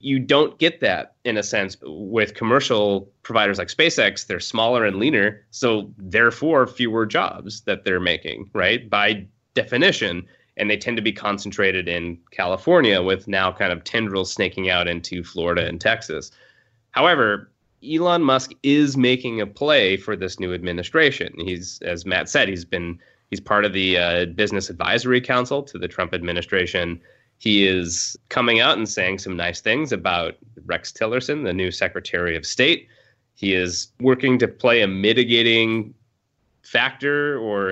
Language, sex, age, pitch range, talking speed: English, male, 30-49, 90-120 Hz, 160 wpm